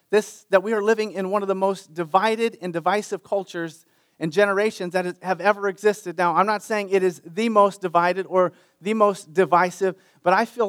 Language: English